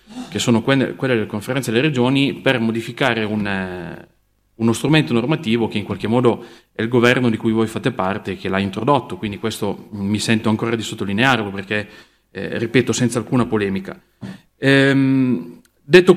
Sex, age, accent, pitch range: male, 30-49, native, 110-125 Hz